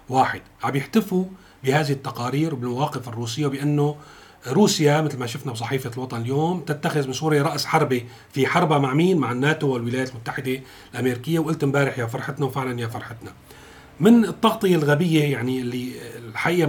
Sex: male